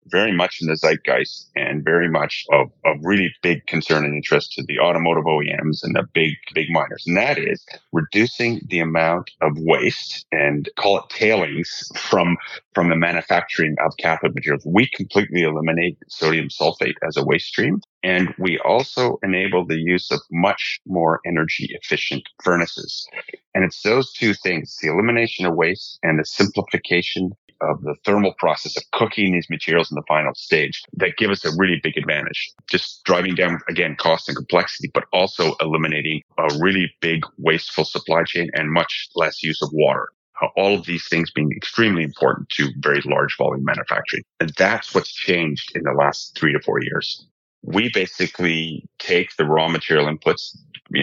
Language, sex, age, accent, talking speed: English, male, 40-59, American, 175 wpm